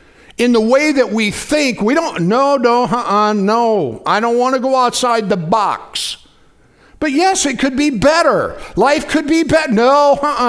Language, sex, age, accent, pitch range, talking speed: English, male, 60-79, American, 220-295 Hz, 200 wpm